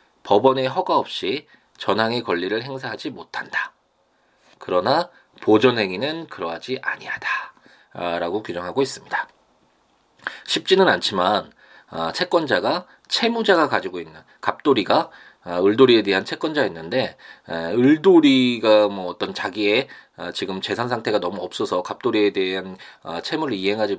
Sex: male